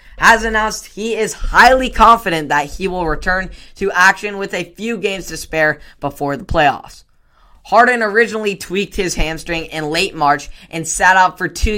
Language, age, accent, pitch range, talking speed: English, 10-29, American, 155-195 Hz, 175 wpm